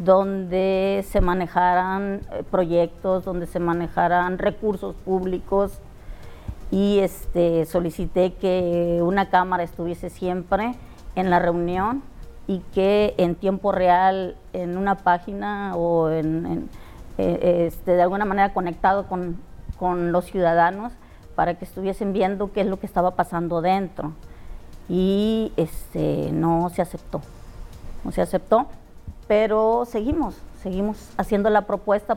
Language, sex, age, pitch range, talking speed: Spanish, female, 40-59, 175-200 Hz, 120 wpm